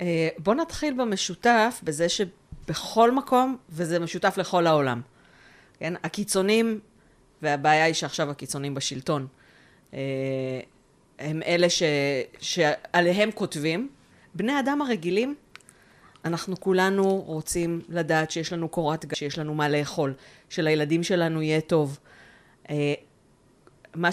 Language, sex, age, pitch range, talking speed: Hebrew, female, 30-49, 145-190 Hz, 105 wpm